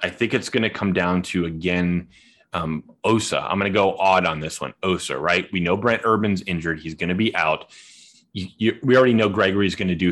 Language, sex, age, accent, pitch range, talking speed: English, male, 30-49, American, 90-120 Hz, 235 wpm